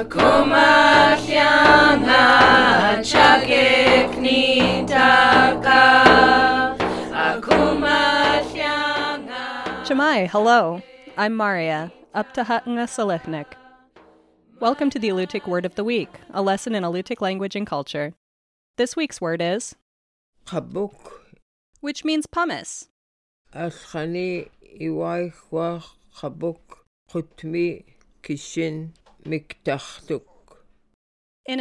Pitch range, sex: 175-260 Hz, female